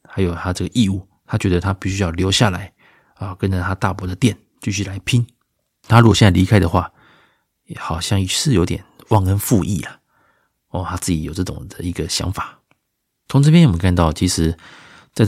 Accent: native